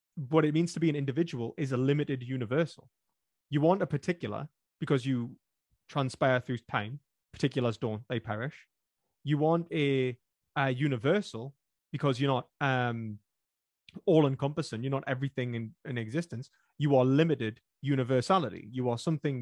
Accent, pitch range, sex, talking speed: British, 120-150 Hz, male, 150 wpm